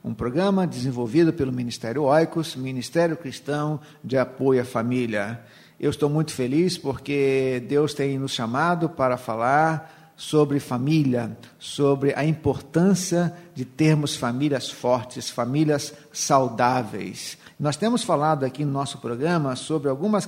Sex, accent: male, Brazilian